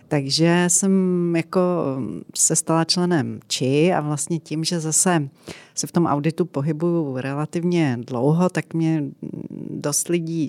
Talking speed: 130 wpm